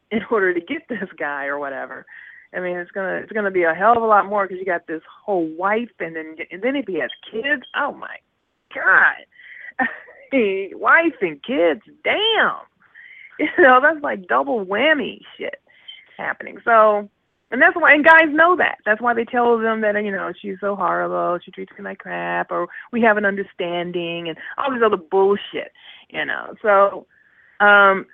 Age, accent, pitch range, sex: 30-49, American, 185-295 Hz, female